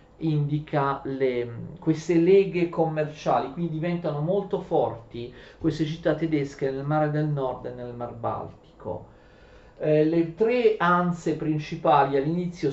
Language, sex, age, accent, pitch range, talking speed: Italian, male, 40-59, native, 135-185 Hz, 125 wpm